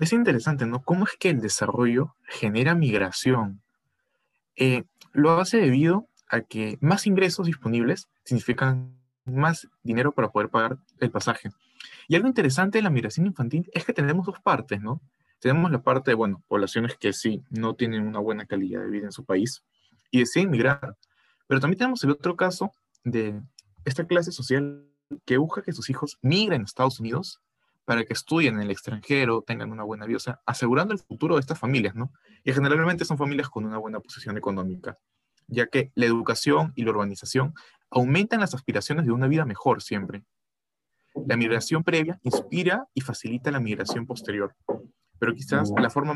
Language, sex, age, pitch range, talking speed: Spanish, male, 20-39, 115-155 Hz, 180 wpm